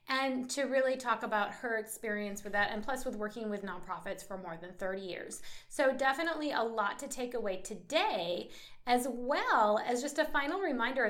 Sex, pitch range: female, 210-295 Hz